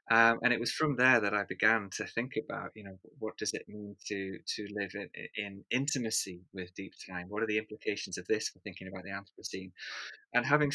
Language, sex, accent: English, male, British